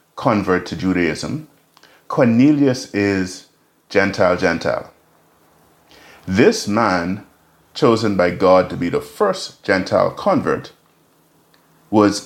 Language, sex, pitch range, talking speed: English, male, 90-120 Hz, 95 wpm